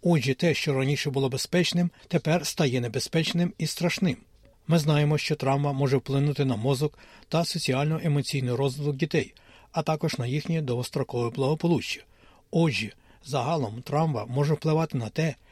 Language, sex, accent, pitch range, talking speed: Ukrainian, male, native, 135-165 Hz, 140 wpm